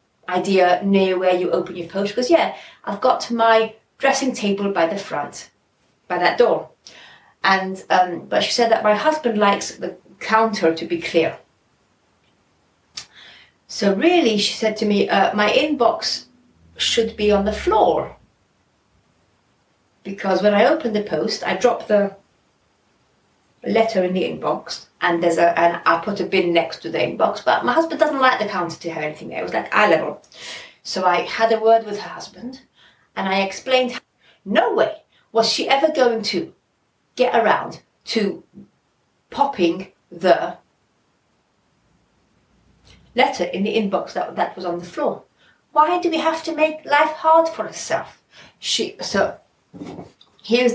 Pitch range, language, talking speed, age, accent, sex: 185-250 Hz, English, 160 wpm, 30-49, British, female